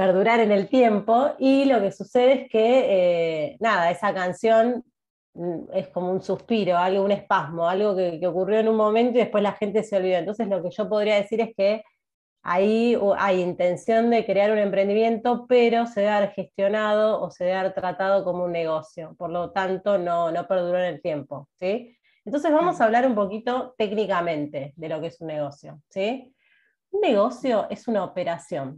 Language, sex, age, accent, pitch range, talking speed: Spanish, female, 30-49, Argentinian, 180-235 Hz, 190 wpm